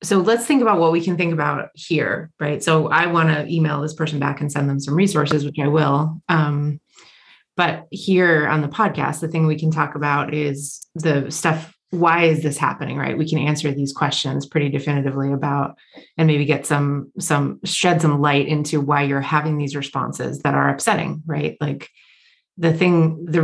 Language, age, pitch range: English, 30-49, 145-170 Hz